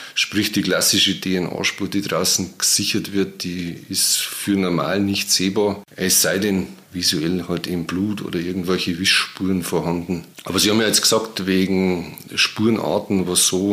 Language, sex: German, male